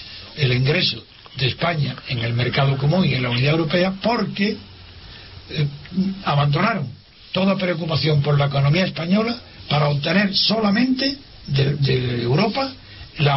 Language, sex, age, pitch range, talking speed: Spanish, male, 60-79, 140-195 Hz, 125 wpm